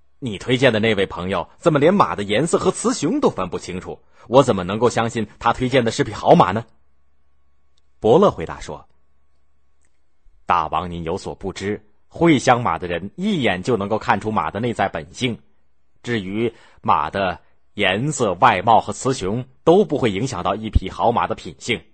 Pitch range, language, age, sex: 75-125 Hz, Chinese, 30-49, male